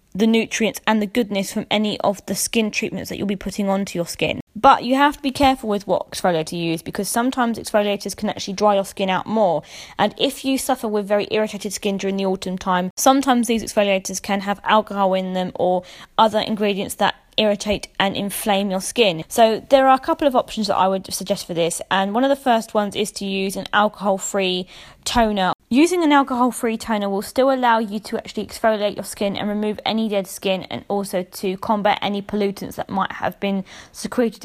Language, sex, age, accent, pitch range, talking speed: English, female, 20-39, British, 195-230 Hz, 215 wpm